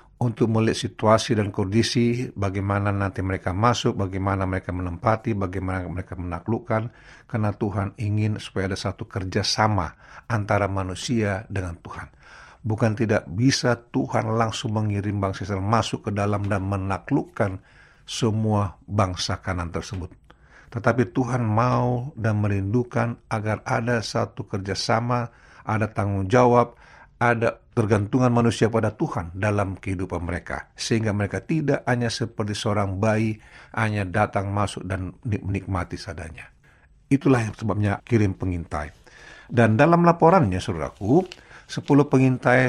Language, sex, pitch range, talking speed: Indonesian, male, 95-120 Hz, 120 wpm